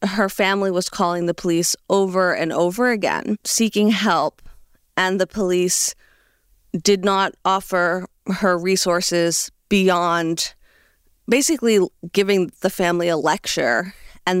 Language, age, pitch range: English, 30-49, 180-215 Hz